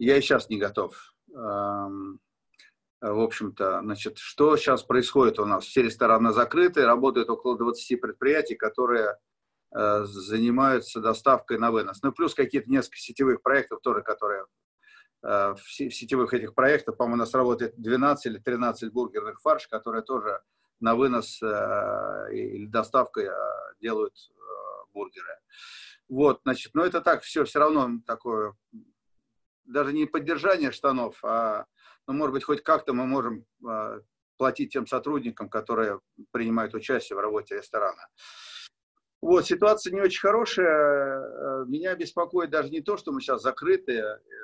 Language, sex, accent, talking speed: Russian, male, native, 135 wpm